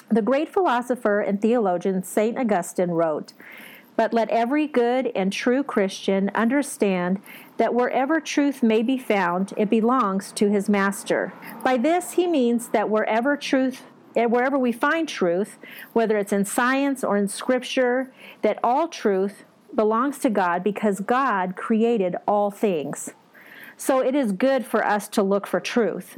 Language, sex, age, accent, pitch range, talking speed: English, female, 40-59, American, 195-245 Hz, 150 wpm